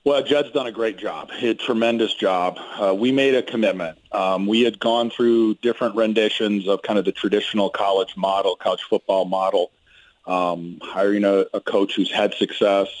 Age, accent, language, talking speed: 40-59, American, English, 175 wpm